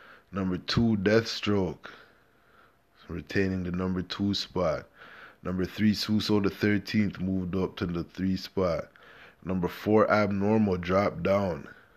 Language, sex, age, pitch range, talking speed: English, male, 20-39, 90-105 Hz, 120 wpm